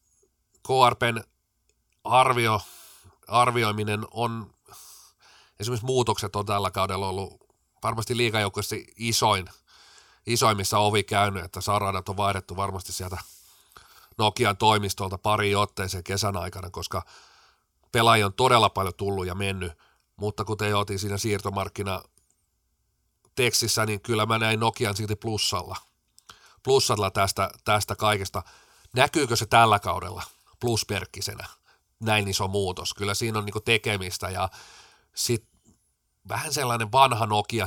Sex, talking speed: male, 115 wpm